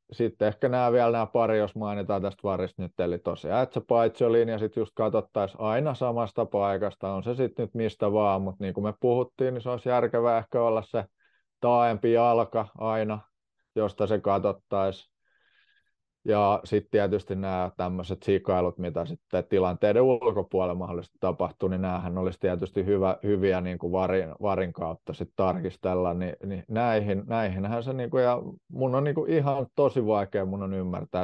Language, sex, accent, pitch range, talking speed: Finnish, male, native, 95-115 Hz, 165 wpm